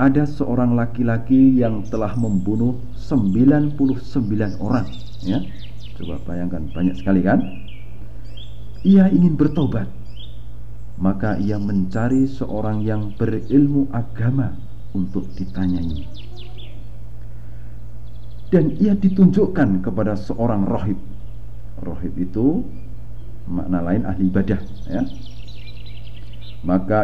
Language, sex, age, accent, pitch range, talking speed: Indonesian, male, 50-69, native, 100-115 Hz, 90 wpm